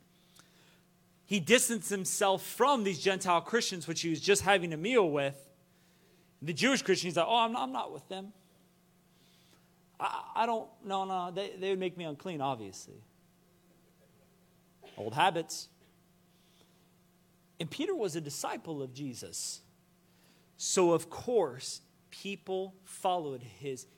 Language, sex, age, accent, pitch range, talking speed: English, male, 40-59, American, 155-180 Hz, 135 wpm